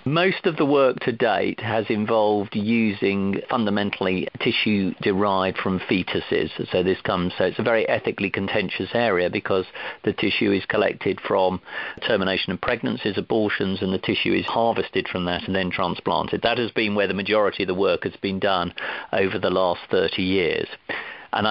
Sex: male